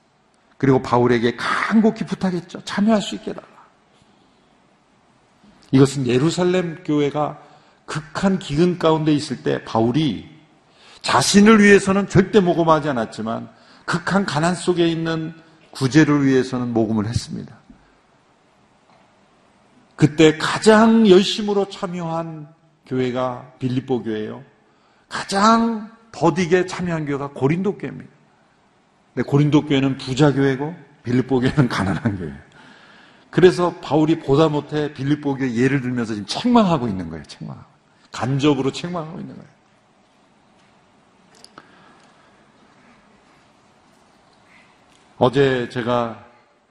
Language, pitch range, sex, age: Korean, 120-170 Hz, male, 50-69